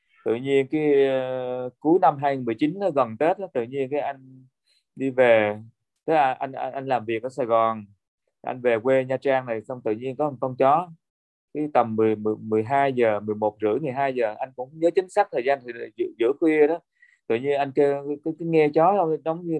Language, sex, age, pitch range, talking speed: Vietnamese, male, 20-39, 125-165 Hz, 235 wpm